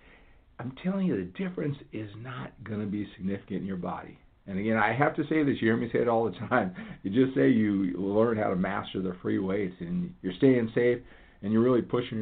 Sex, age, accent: male, 50-69, American